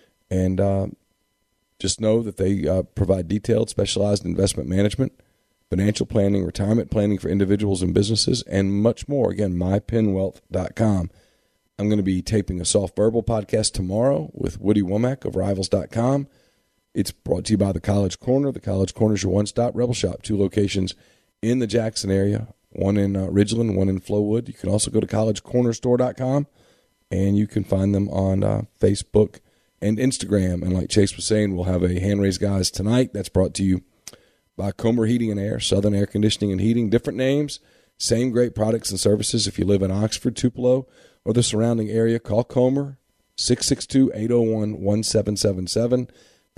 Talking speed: 170 wpm